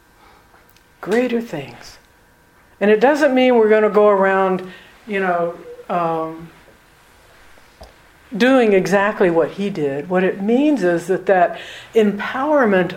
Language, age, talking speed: English, 60-79, 120 wpm